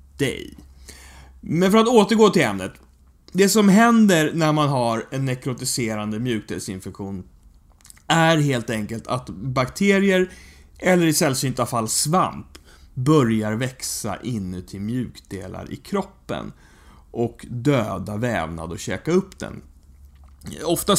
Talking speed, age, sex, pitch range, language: 110 wpm, 30-49, male, 105-155 Hz, English